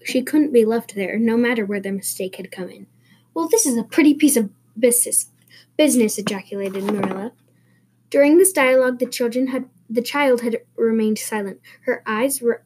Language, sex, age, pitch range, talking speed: English, female, 10-29, 225-280 Hz, 175 wpm